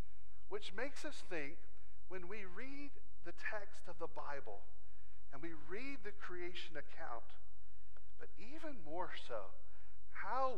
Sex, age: male, 50-69